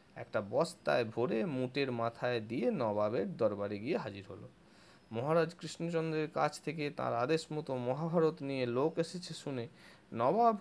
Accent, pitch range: native, 135-185 Hz